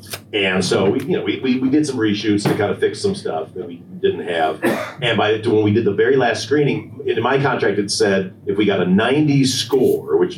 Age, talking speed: 40-59, 250 wpm